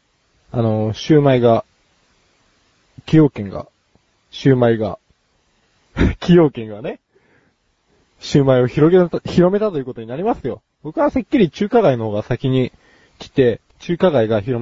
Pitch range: 110-145 Hz